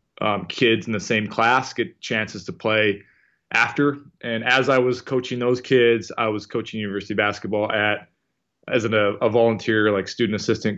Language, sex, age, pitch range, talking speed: English, male, 20-39, 100-115 Hz, 175 wpm